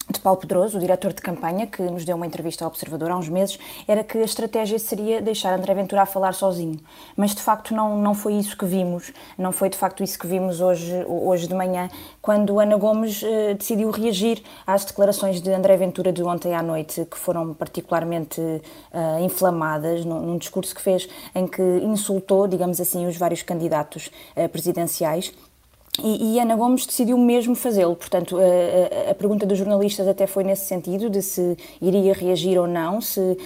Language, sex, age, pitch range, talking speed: Portuguese, female, 20-39, 180-215 Hz, 195 wpm